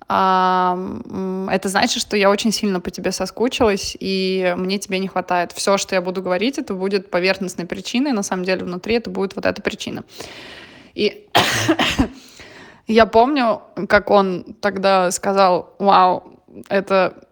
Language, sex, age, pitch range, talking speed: Russian, female, 20-39, 190-210 Hz, 140 wpm